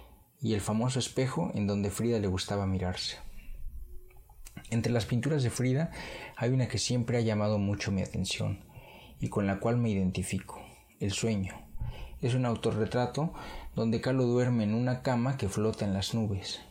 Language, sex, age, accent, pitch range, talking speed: English, male, 40-59, Spanish, 100-125 Hz, 165 wpm